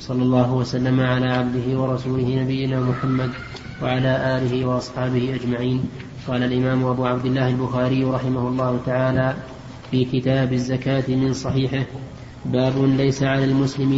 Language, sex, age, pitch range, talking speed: Arabic, male, 20-39, 130-140 Hz, 130 wpm